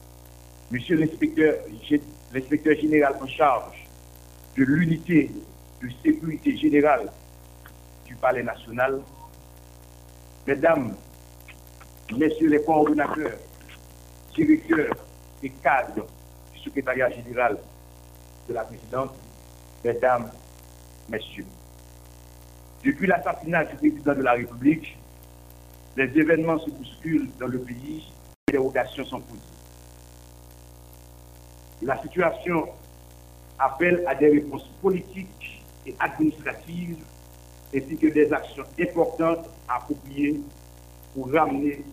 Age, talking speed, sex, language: 60-79, 90 wpm, male, French